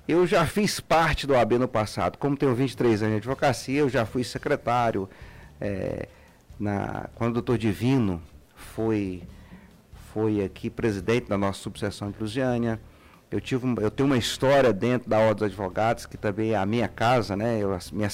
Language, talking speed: Portuguese, 170 wpm